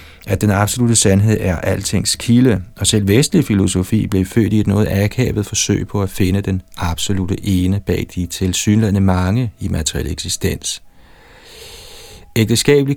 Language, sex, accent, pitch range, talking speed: Danish, male, native, 90-110 Hz, 150 wpm